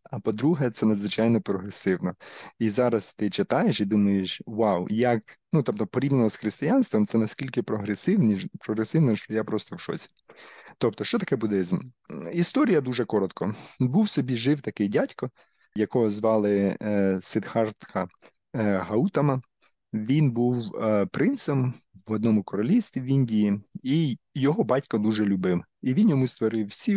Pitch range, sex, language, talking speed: 105-145 Hz, male, Ukrainian, 135 wpm